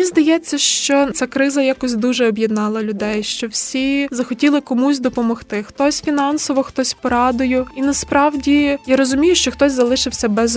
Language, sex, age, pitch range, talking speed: Ukrainian, female, 20-39, 230-275 Hz, 150 wpm